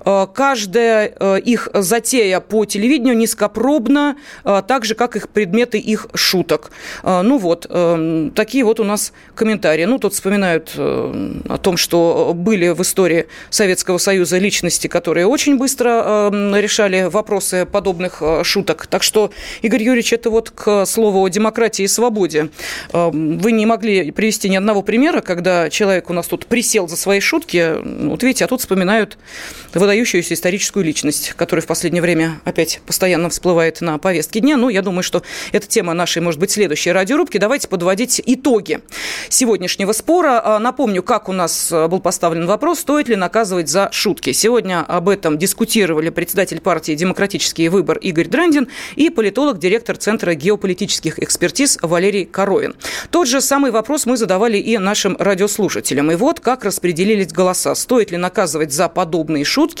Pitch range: 175-225 Hz